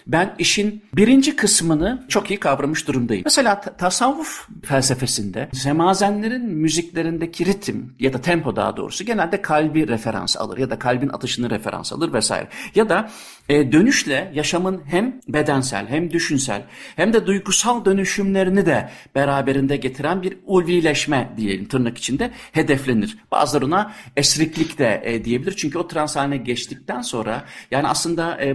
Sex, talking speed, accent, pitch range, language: male, 140 wpm, native, 130-190 Hz, Turkish